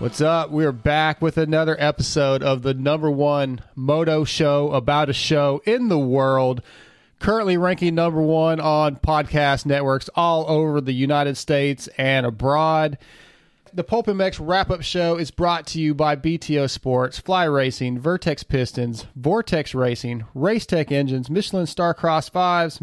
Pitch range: 135-170 Hz